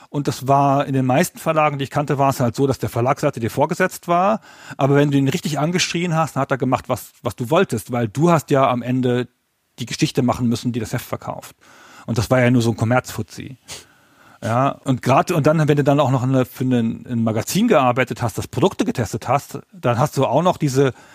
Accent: German